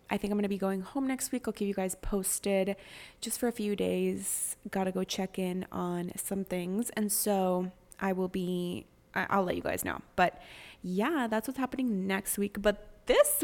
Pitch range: 180-210 Hz